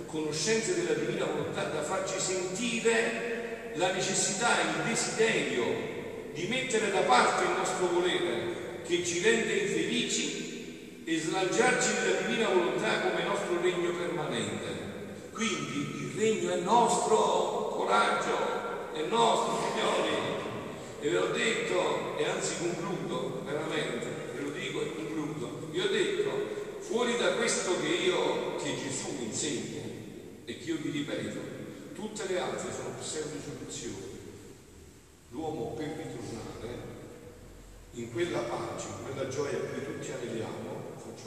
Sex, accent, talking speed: male, native, 130 wpm